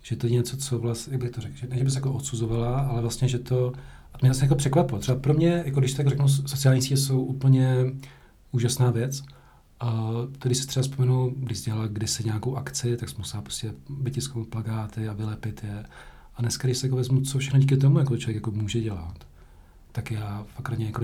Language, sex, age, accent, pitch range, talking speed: Czech, male, 40-59, native, 115-135 Hz, 215 wpm